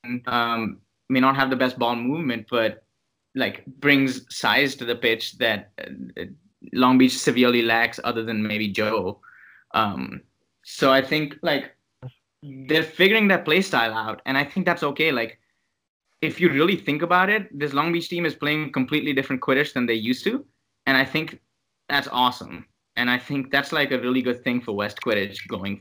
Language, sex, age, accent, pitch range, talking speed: English, male, 20-39, Indian, 120-145 Hz, 180 wpm